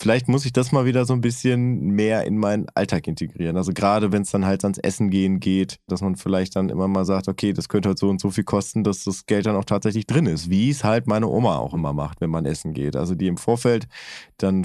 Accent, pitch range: German, 95-120 Hz